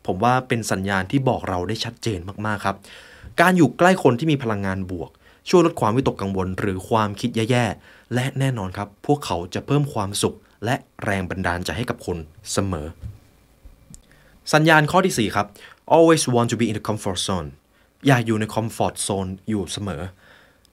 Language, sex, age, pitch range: Thai, male, 20-39, 100-145 Hz